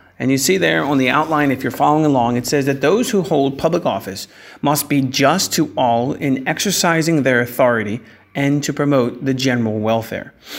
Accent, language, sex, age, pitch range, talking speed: American, English, male, 40-59, 120-150 Hz, 195 wpm